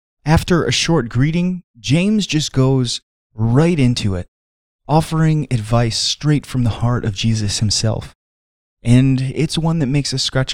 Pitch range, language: 110-145 Hz, English